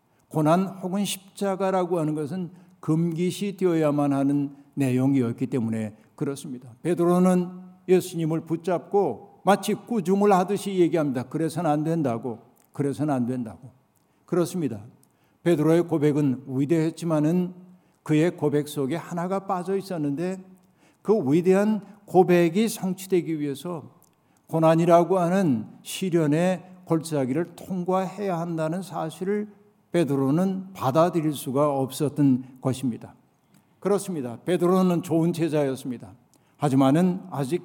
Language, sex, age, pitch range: Korean, male, 60-79, 145-185 Hz